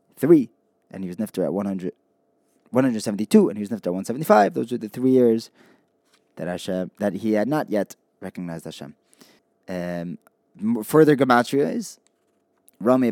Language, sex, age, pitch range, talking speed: English, male, 20-39, 100-125 Hz, 150 wpm